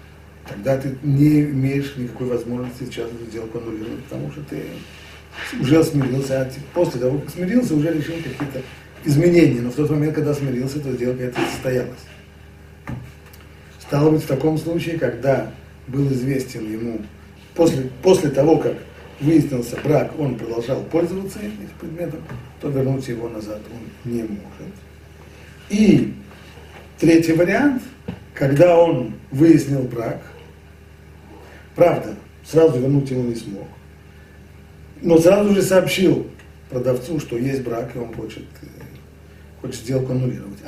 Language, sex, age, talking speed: Russian, male, 40-59, 130 wpm